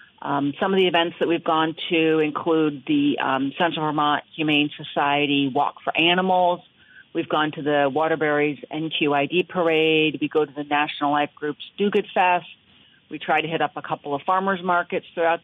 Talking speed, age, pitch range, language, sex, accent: 180 wpm, 40-59, 150-180 Hz, English, female, American